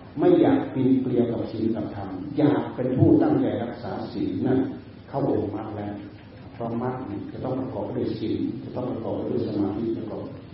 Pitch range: 100-125 Hz